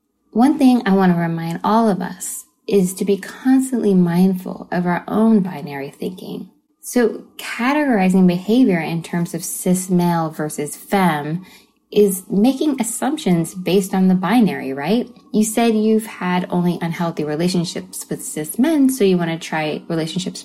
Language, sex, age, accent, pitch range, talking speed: English, female, 20-39, American, 175-215 Hz, 155 wpm